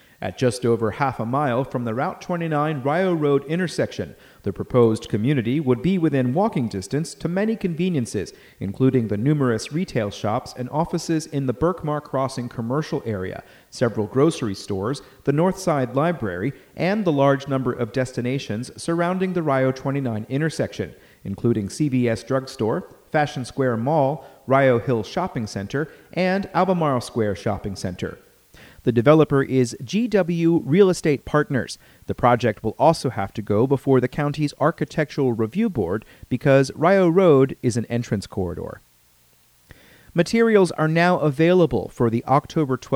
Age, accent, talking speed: 40-59, American, 140 wpm